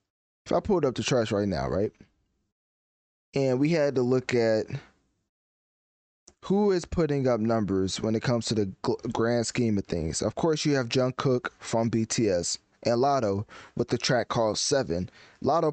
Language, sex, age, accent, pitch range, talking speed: English, male, 20-39, American, 110-135 Hz, 170 wpm